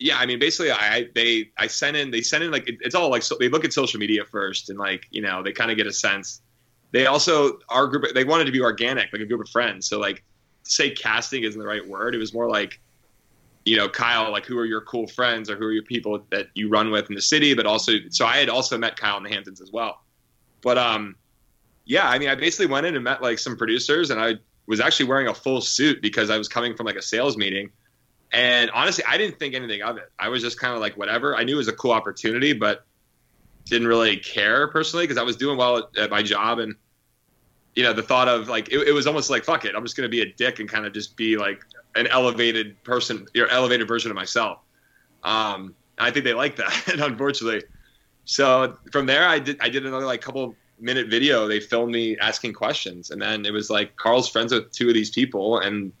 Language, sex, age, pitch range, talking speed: English, male, 20-39, 105-125 Hz, 250 wpm